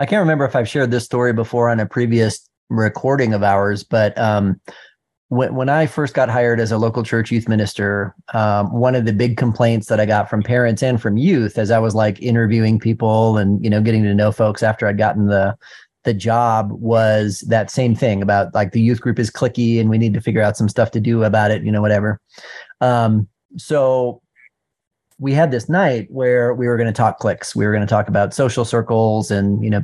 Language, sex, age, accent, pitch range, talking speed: English, male, 30-49, American, 110-130 Hz, 220 wpm